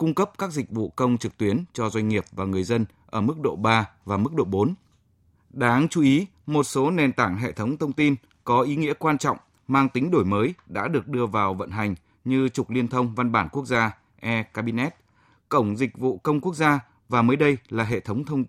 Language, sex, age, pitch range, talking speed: Vietnamese, male, 20-39, 110-145 Hz, 225 wpm